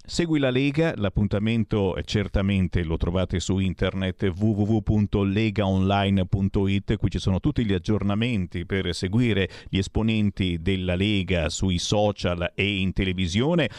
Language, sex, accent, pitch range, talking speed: Italian, male, native, 100-140 Hz, 120 wpm